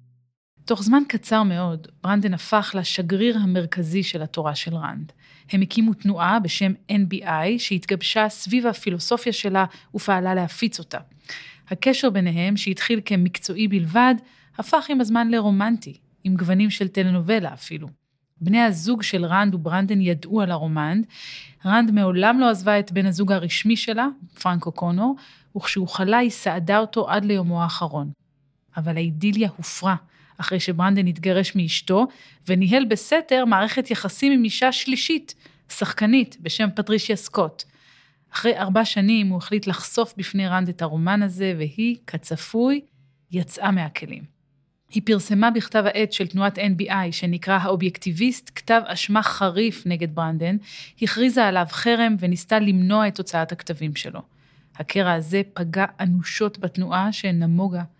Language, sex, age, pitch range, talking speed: Hebrew, female, 30-49, 170-215 Hz, 130 wpm